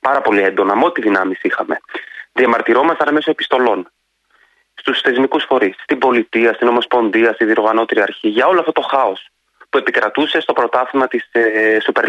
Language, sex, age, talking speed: Greek, male, 30-49, 155 wpm